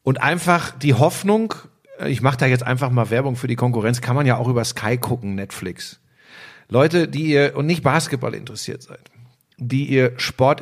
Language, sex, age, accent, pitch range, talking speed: German, male, 50-69, German, 120-150 Hz, 185 wpm